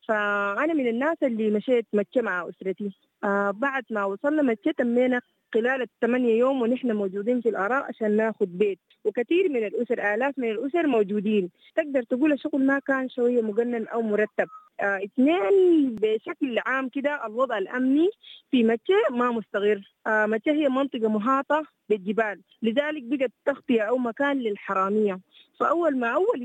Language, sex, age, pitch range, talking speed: English, female, 30-49, 210-270 Hz, 140 wpm